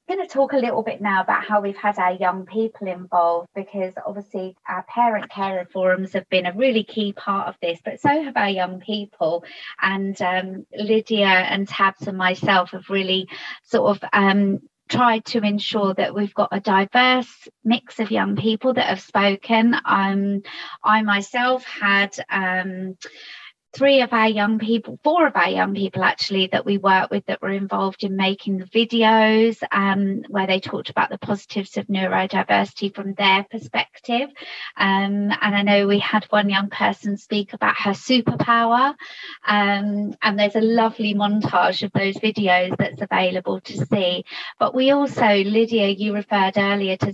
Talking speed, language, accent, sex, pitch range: 170 wpm, English, British, female, 190-220 Hz